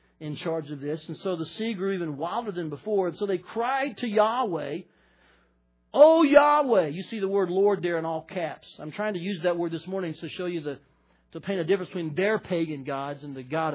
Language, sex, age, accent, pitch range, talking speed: English, male, 40-59, American, 160-245 Hz, 230 wpm